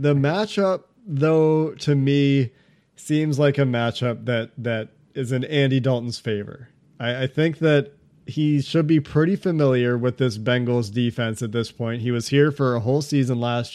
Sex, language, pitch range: male, English, 125-150 Hz